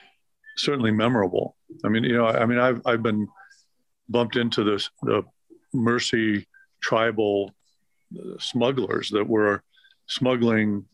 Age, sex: 50-69, male